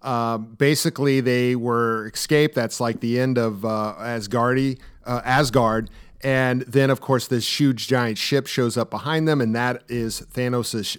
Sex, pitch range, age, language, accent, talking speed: male, 115-140 Hz, 40-59, English, American, 165 wpm